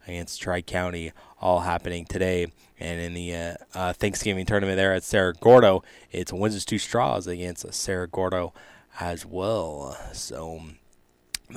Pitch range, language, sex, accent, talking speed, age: 90-105 Hz, English, male, American, 145 wpm, 20-39